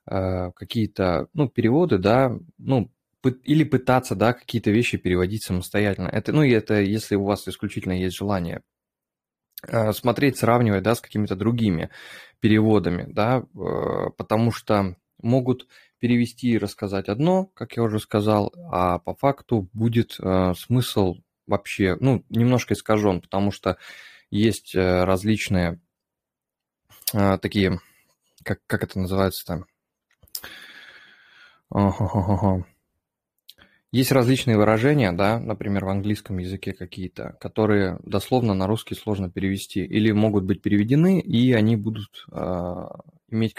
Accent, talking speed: native, 125 wpm